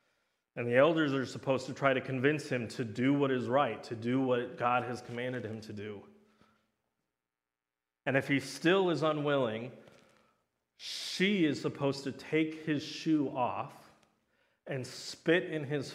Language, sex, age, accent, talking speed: English, male, 30-49, American, 160 wpm